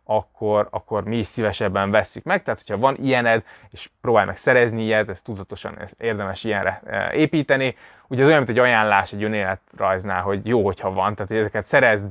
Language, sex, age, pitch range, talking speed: Hungarian, male, 20-39, 105-135 Hz, 190 wpm